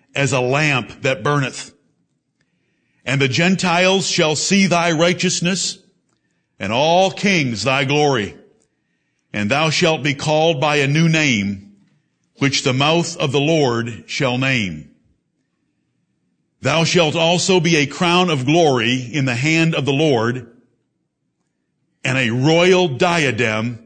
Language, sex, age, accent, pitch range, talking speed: English, male, 60-79, American, 135-170 Hz, 130 wpm